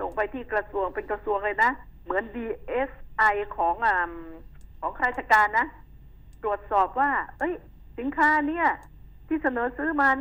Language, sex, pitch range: Thai, female, 205-265 Hz